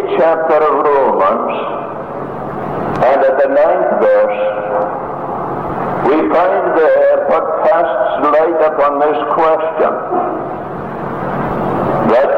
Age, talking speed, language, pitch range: 60-79, 85 wpm, English, 155-175 Hz